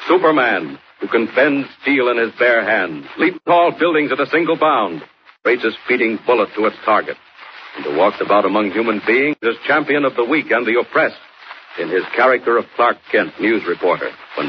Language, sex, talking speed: English, male, 190 wpm